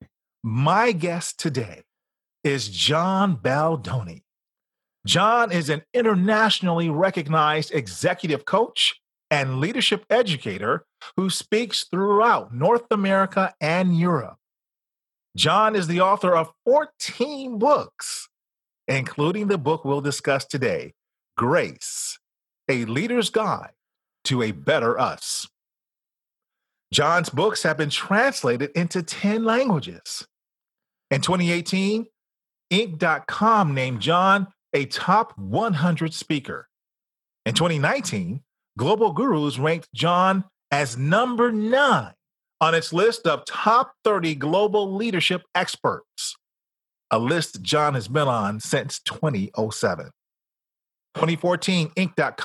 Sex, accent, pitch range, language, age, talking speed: male, American, 150-200 Hz, English, 40-59, 100 wpm